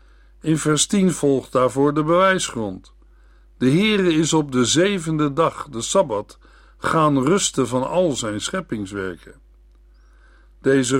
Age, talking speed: 60-79, 125 wpm